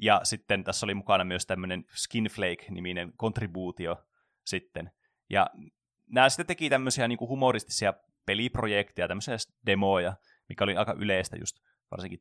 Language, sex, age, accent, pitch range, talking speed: Finnish, male, 20-39, native, 95-125 Hz, 135 wpm